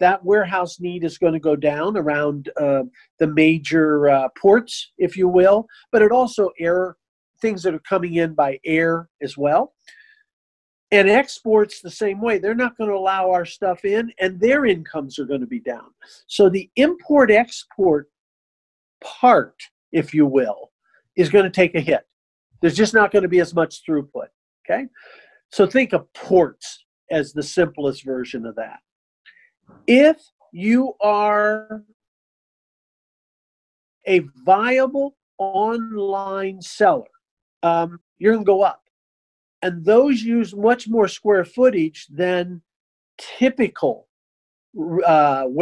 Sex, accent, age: male, American, 50-69